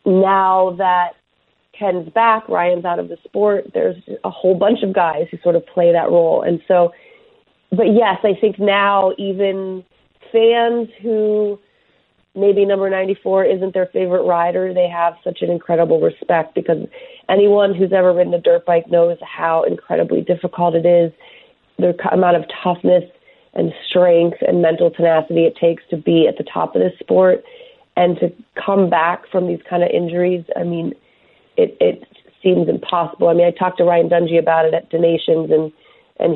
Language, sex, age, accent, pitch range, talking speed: English, female, 30-49, American, 165-200 Hz, 175 wpm